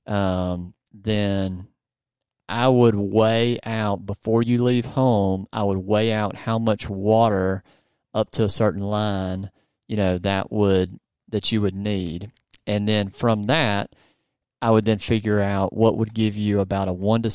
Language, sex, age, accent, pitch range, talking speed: English, male, 30-49, American, 95-110 Hz, 165 wpm